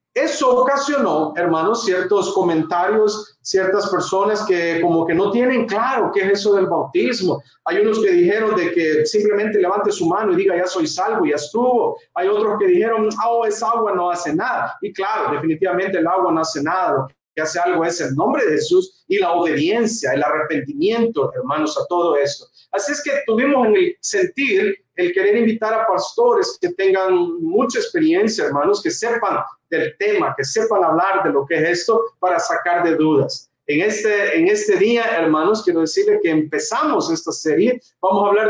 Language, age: English, 40-59